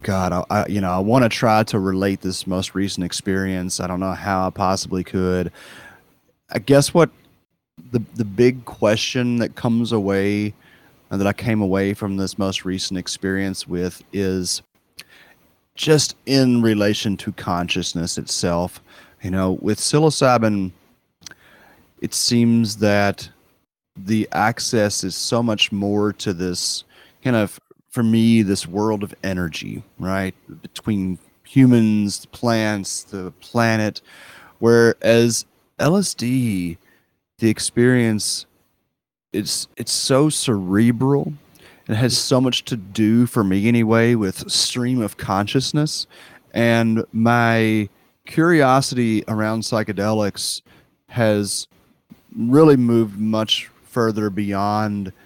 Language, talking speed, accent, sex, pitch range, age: English, 120 wpm, American, male, 95-115 Hz, 30-49